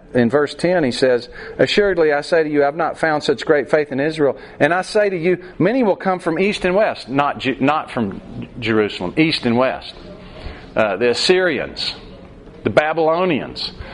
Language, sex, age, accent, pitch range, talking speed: English, male, 40-59, American, 140-185 Hz, 190 wpm